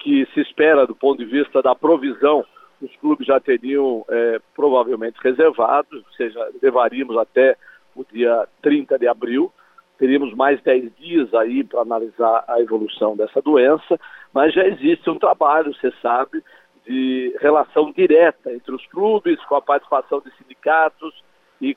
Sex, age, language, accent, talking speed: male, 50-69, Portuguese, Brazilian, 150 wpm